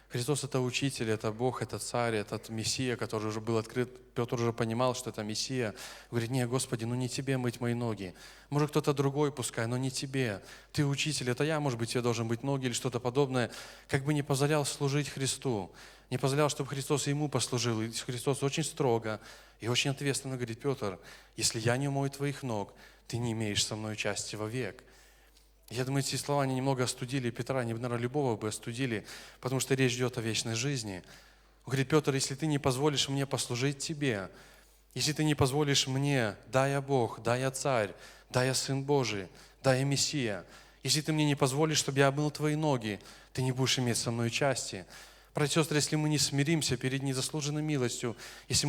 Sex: male